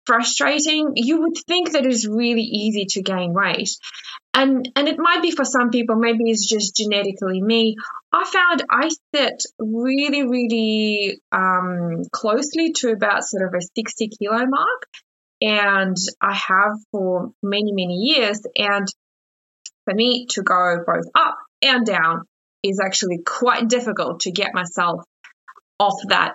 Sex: female